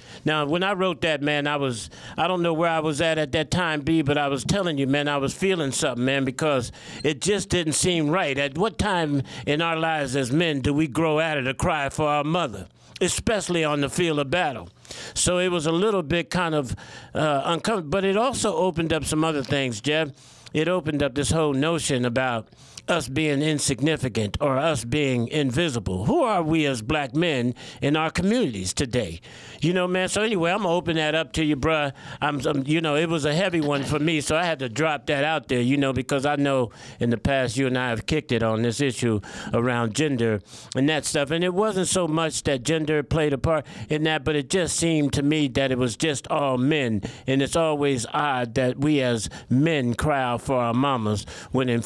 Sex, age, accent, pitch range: male, 50-69, American, 135-165 Hz